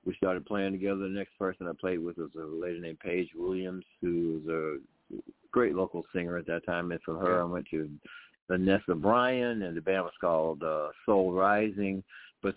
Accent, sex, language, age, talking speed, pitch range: American, male, English, 50-69, 195 wpm, 85-100 Hz